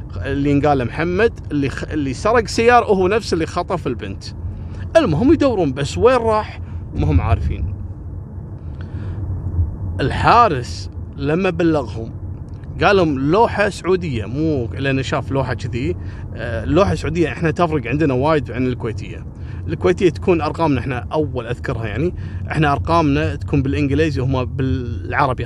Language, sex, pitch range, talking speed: Arabic, male, 95-155 Hz, 125 wpm